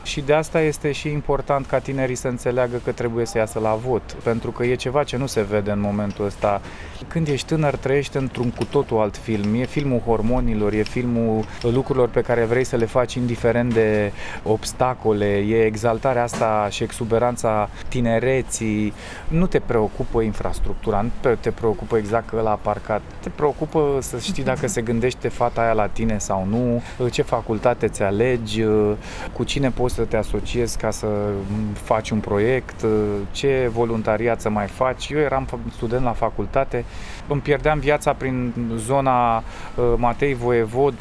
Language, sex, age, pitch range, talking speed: Romanian, male, 20-39, 110-130 Hz, 165 wpm